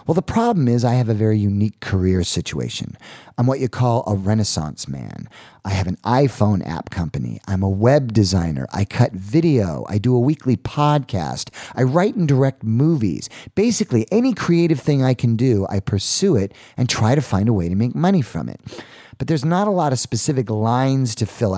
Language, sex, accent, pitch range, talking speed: English, male, American, 100-140 Hz, 200 wpm